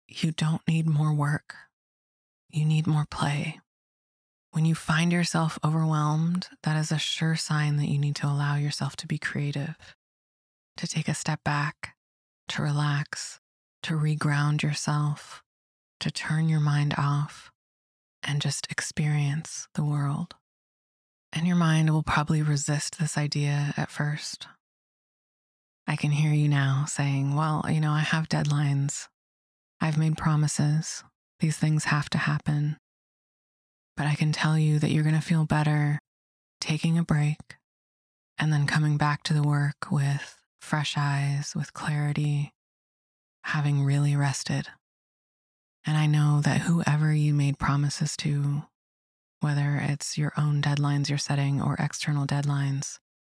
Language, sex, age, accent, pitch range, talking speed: English, female, 20-39, American, 145-155 Hz, 140 wpm